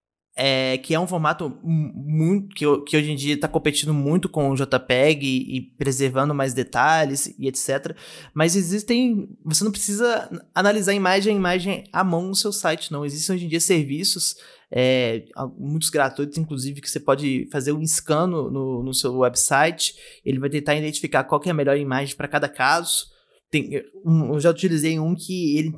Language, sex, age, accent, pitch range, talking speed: Portuguese, male, 20-39, Brazilian, 140-175 Hz, 185 wpm